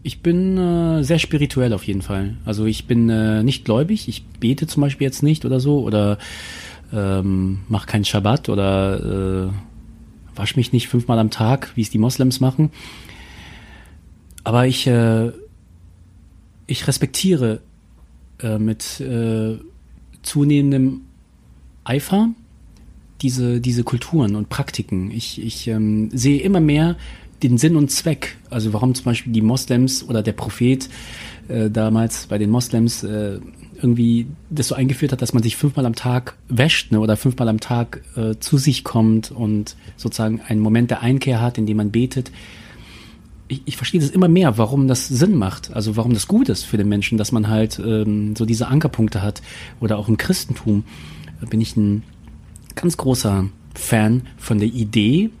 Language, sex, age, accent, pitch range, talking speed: German, male, 30-49, German, 105-130 Hz, 165 wpm